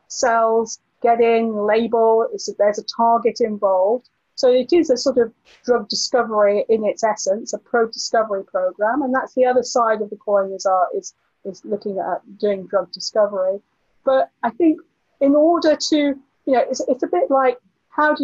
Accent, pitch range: British, 225-275 Hz